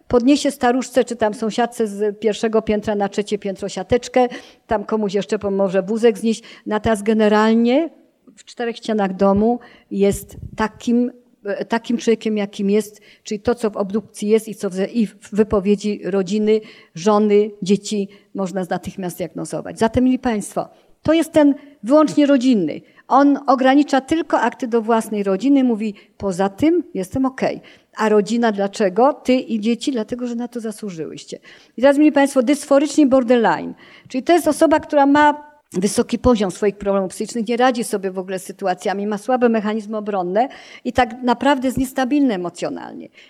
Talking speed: 155 wpm